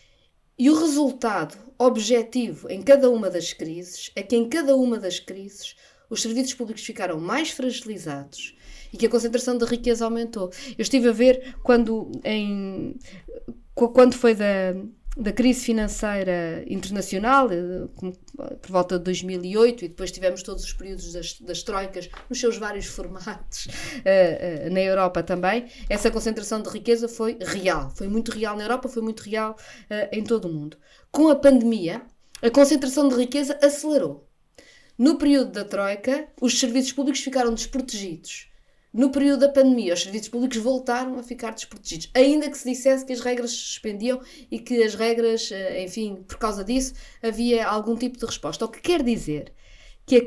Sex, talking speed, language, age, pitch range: female, 165 wpm, Portuguese, 20-39, 190-255 Hz